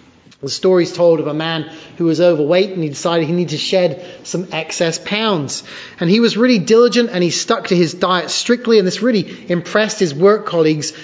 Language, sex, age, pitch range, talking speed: English, male, 30-49, 160-205 Hz, 205 wpm